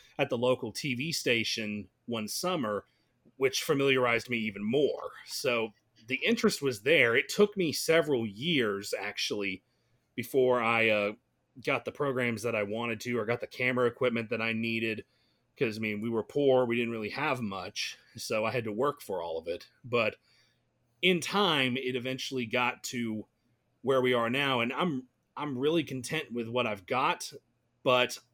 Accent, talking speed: American, 175 wpm